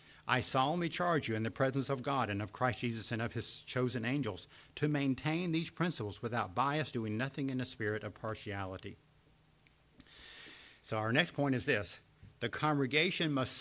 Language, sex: English, male